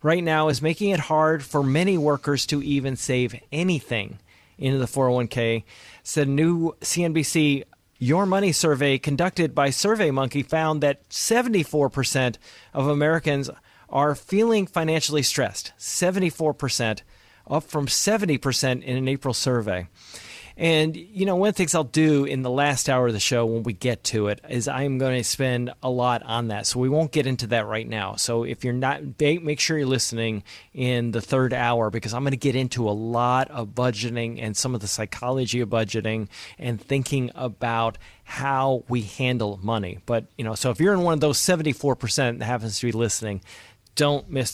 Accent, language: American, English